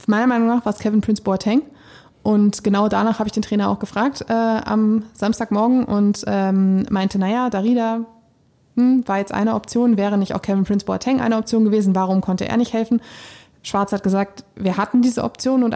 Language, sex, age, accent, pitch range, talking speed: German, female, 20-39, German, 200-225 Hz, 180 wpm